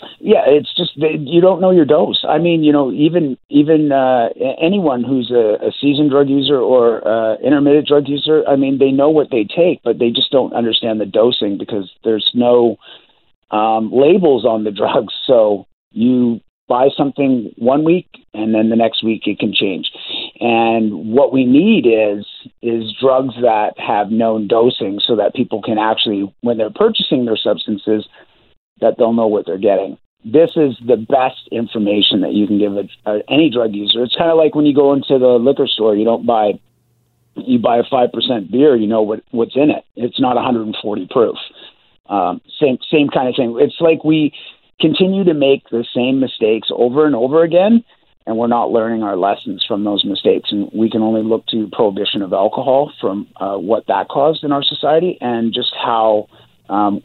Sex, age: male, 50-69